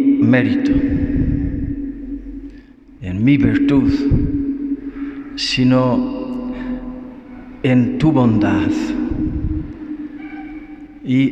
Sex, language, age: male, Spanish, 50-69